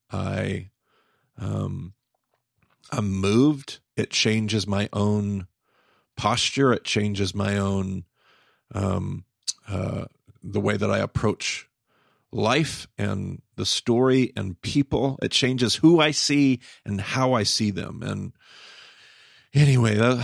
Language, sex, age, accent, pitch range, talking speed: English, male, 40-59, American, 100-115 Hz, 115 wpm